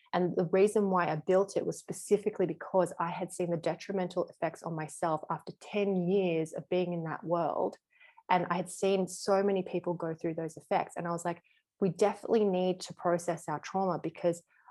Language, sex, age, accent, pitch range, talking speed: English, female, 20-39, Australian, 160-185 Hz, 200 wpm